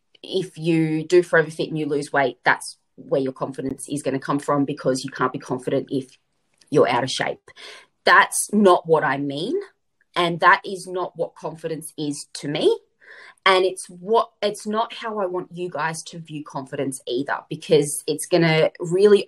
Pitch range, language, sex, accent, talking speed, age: 150-215 Hz, English, female, Australian, 185 wpm, 20-39